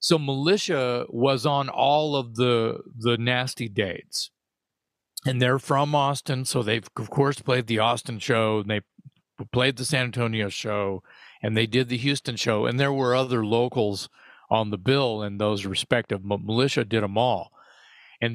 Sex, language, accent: male, English, American